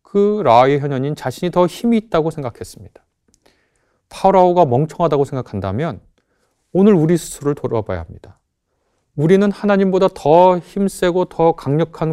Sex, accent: male, native